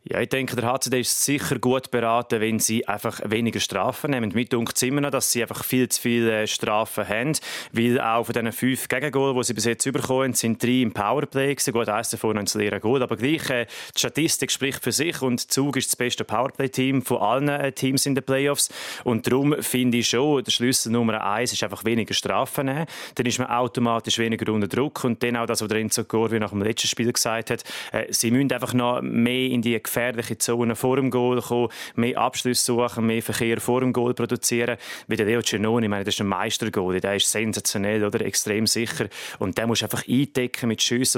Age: 30-49